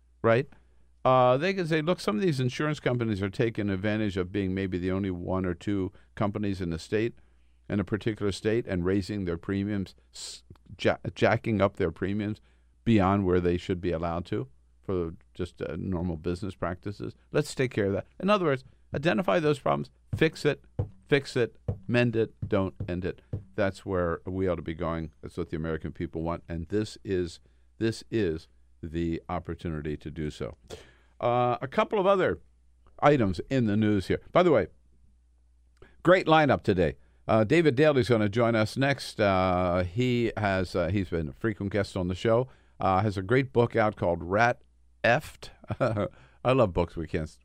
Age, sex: 50-69, male